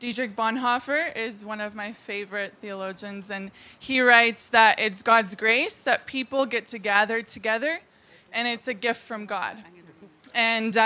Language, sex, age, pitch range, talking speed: English, female, 20-39, 220-260 Hz, 155 wpm